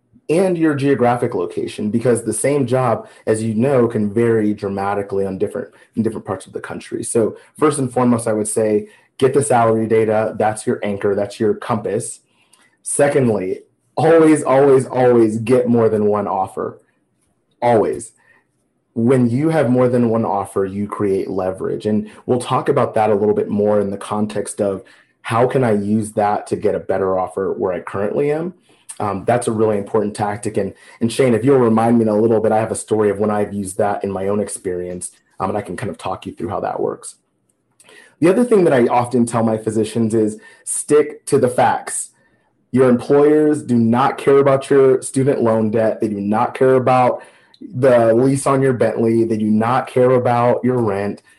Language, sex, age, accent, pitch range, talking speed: English, male, 30-49, American, 105-130 Hz, 195 wpm